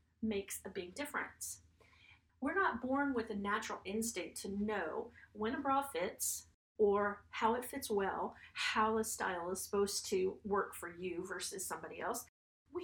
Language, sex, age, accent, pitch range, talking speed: English, female, 40-59, American, 195-270 Hz, 165 wpm